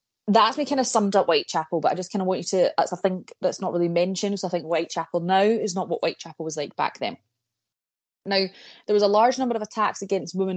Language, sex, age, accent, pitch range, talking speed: English, female, 20-39, British, 165-200 Hz, 255 wpm